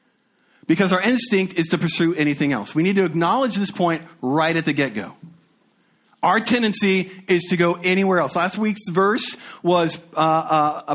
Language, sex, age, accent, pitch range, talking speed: English, male, 40-59, American, 160-210 Hz, 170 wpm